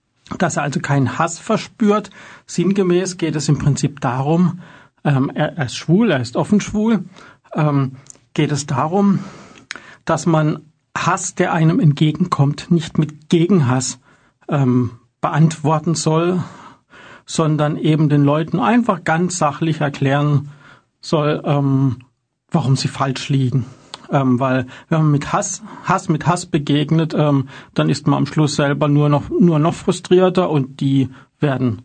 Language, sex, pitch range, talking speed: German, male, 135-165 Hz, 140 wpm